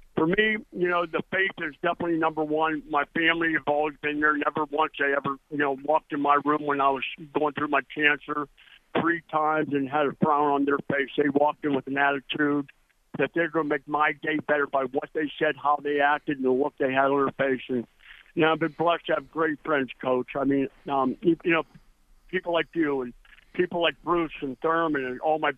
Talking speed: 235 wpm